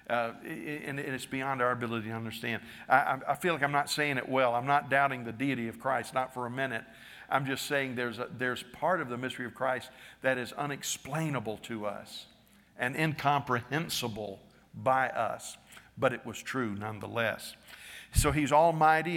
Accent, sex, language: American, male, English